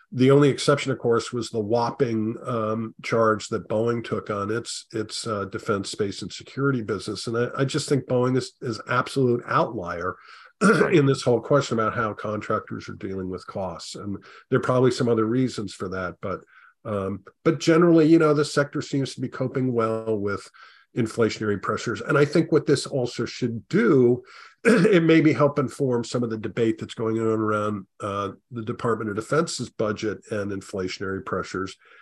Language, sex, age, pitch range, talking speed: English, male, 50-69, 110-135 Hz, 185 wpm